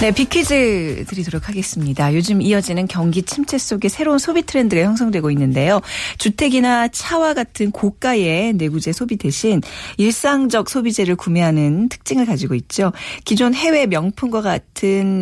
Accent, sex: native, female